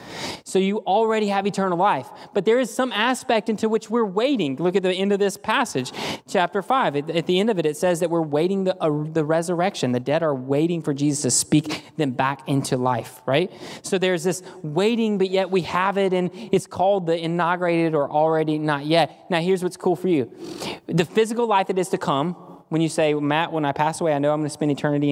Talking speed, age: 230 wpm, 20-39